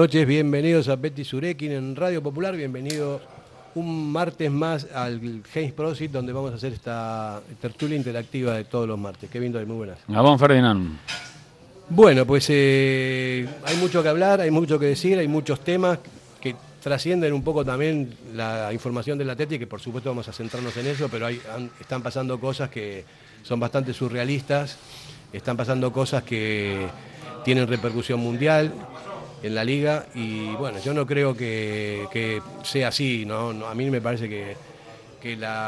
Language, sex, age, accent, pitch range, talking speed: Spanish, male, 40-59, Argentinian, 115-145 Hz, 165 wpm